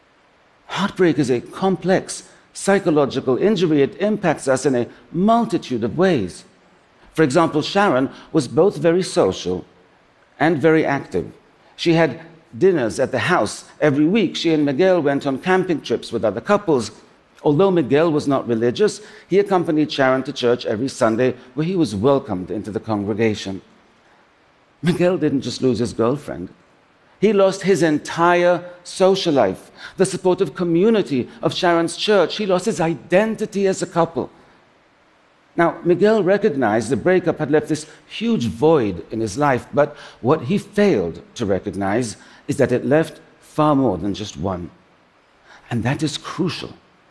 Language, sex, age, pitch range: Japanese, male, 60-79, 130-185 Hz